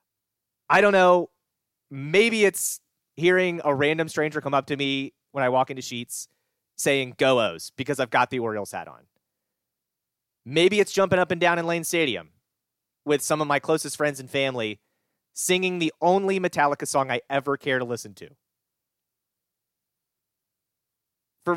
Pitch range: 125-170 Hz